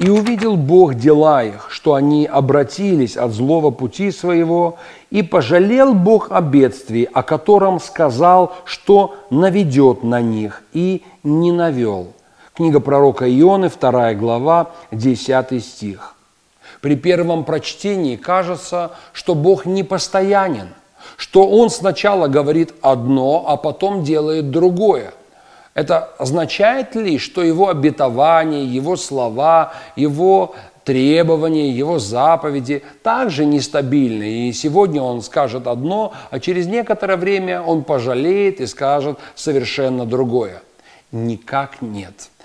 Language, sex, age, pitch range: Russian, male, 40-59, 135-180 Hz